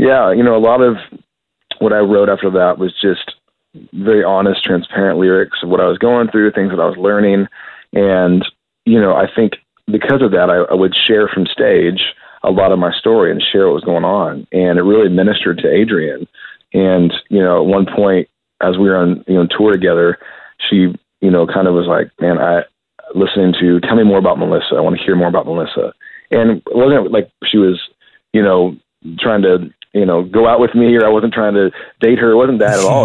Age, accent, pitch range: 40-59, American, 90-105 Hz